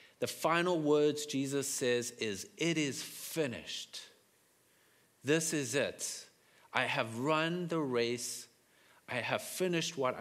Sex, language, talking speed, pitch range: male, English, 125 wpm, 110-155 Hz